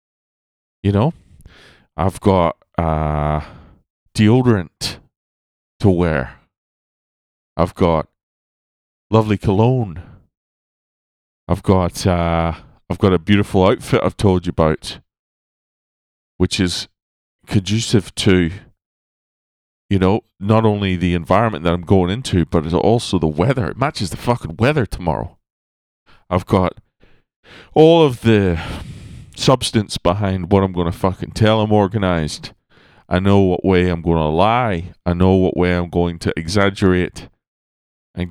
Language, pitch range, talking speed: English, 80-100 Hz, 125 wpm